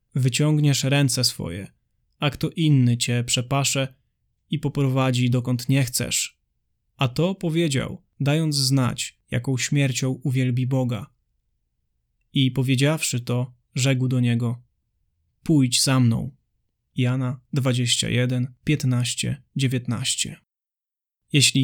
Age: 20-39